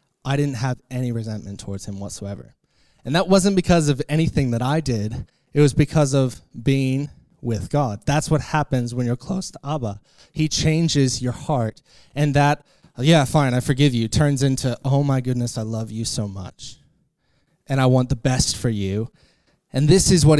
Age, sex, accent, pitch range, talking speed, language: 20-39, male, American, 125-160 Hz, 190 wpm, English